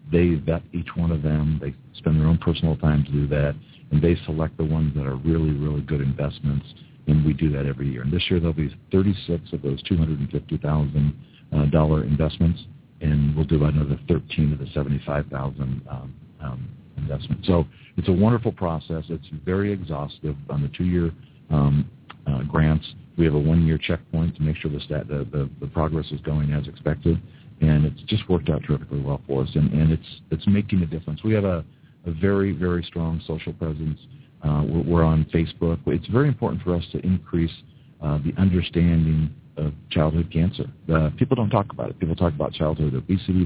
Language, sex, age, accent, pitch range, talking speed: English, male, 50-69, American, 75-85 Hz, 190 wpm